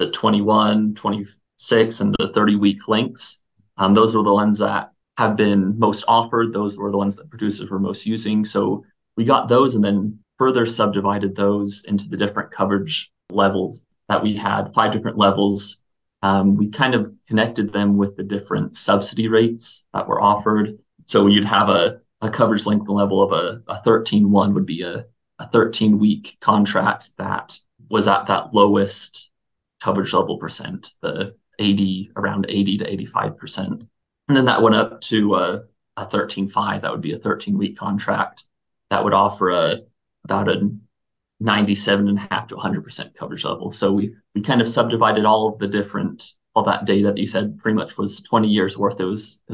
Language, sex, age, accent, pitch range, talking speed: English, male, 20-39, American, 100-110 Hz, 180 wpm